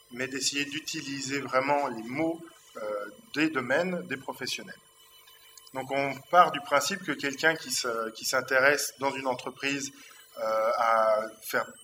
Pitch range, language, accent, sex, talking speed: 125-160 Hz, French, French, male, 140 wpm